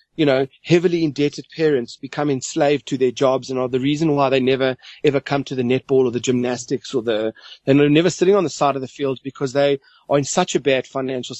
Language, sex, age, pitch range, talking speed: English, male, 30-49, 130-170 Hz, 230 wpm